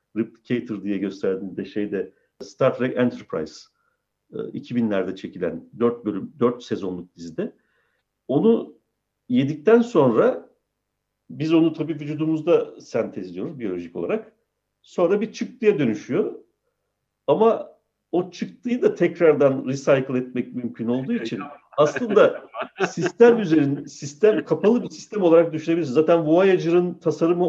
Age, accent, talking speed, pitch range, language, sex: 50-69, native, 105 wpm, 125-210 Hz, Turkish, male